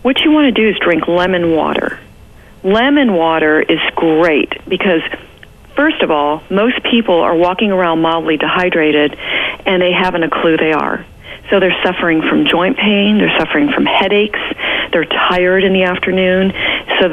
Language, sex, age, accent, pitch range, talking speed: English, female, 40-59, American, 170-215 Hz, 165 wpm